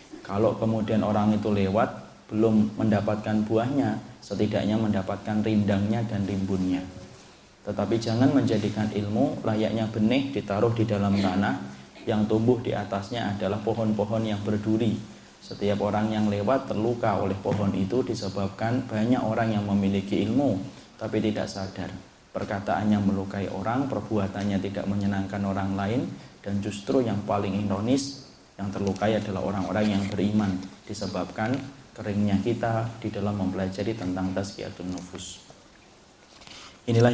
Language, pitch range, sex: Indonesian, 100-110 Hz, male